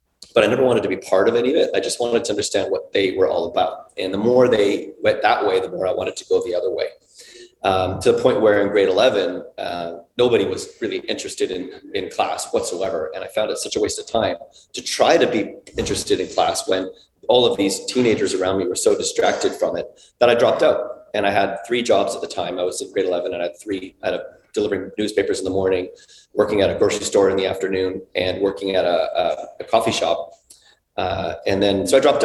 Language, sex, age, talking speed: English, male, 30-49, 245 wpm